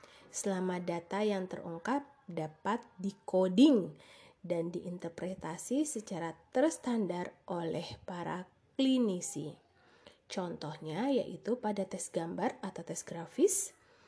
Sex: female